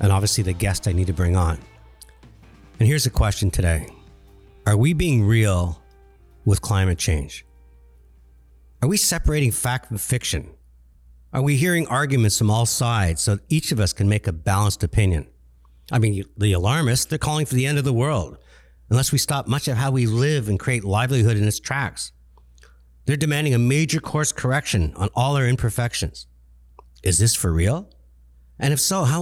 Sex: male